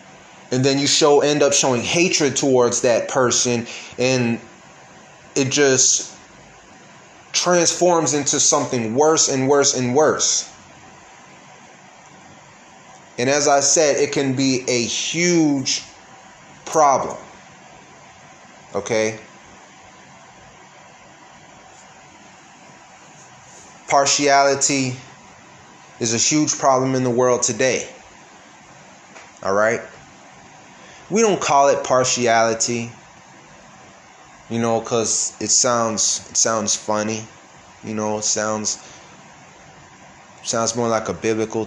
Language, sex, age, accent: English, male, 30-49, American